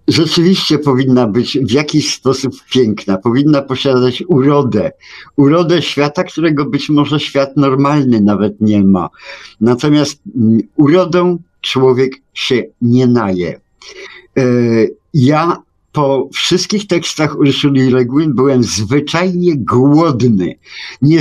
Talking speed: 100 wpm